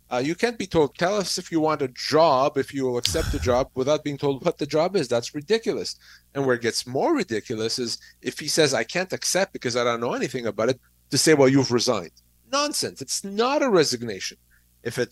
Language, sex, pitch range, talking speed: English, male, 125-160 Hz, 235 wpm